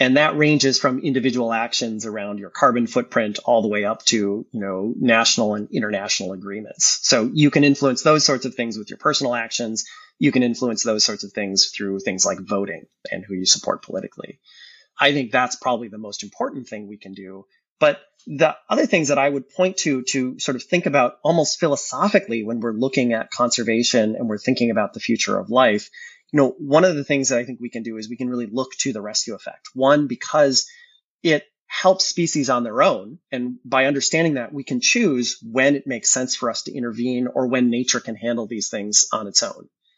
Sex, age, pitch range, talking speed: male, 30-49, 115-145 Hz, 210 wpm